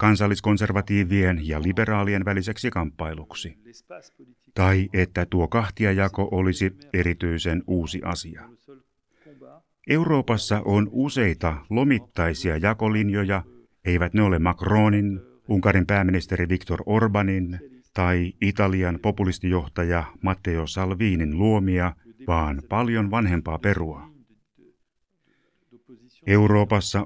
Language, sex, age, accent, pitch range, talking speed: Finnish, male, 60-79, native, 90-105 Hz, 80 wpm